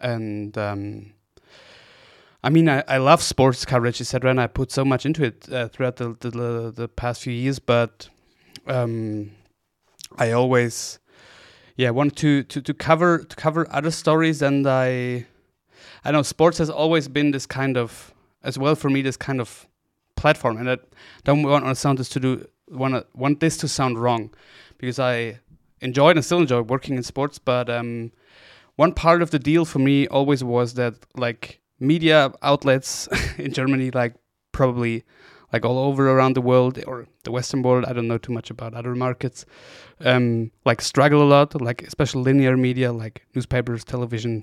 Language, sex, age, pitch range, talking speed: English, male, 20-39, 120-145 Hz, 180 wpm